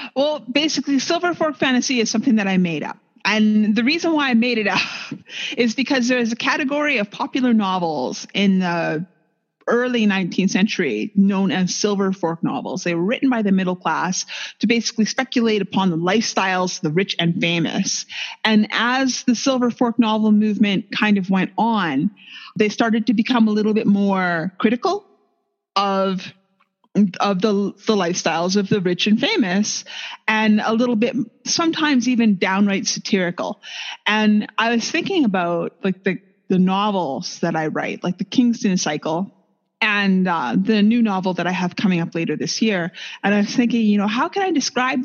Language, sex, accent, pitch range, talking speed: English, female, American, 190-245 Hz, 175 wpm